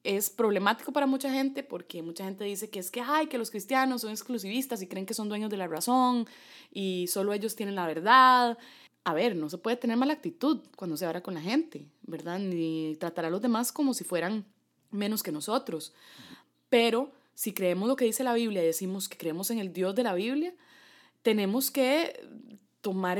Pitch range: 185-255 Hz